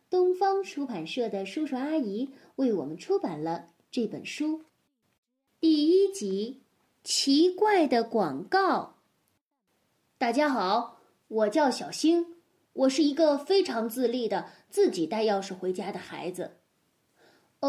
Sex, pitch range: female, 210-320 Hz